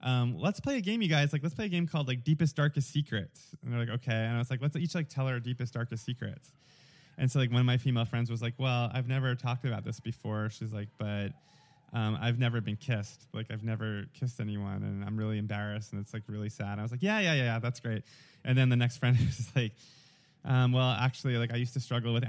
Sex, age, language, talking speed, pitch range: male, 20-39, English, 265 wpm, 115-145 Hz